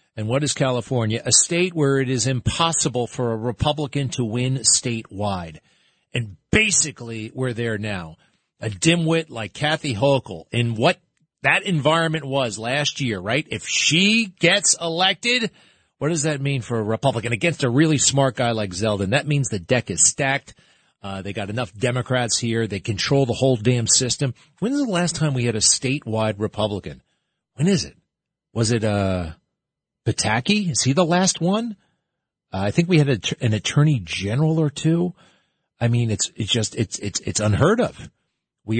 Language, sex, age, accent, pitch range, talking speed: English, male, 40-59, American, 110-150 Hz, 175 wpm